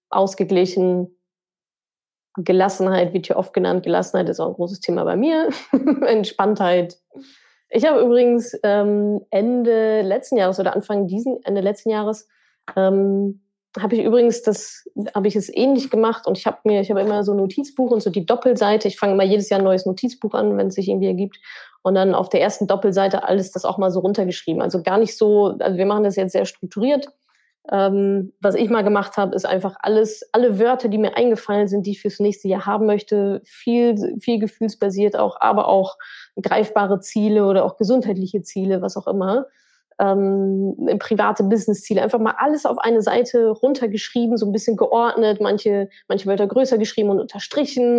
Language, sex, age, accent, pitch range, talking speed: German, female, 20-39, German, 195-225 Hz, 185 wpm